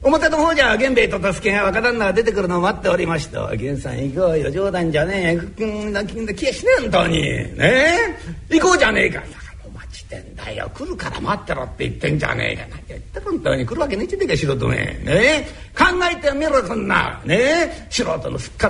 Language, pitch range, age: Japanese, 195-280 Hz, 60-79